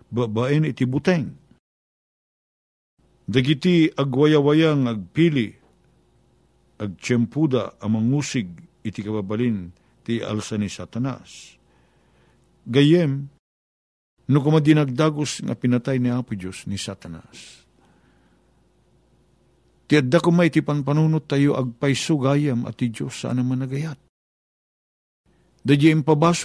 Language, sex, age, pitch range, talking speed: Filipino, male, 50-69, 110-155 Hz, 95 wpm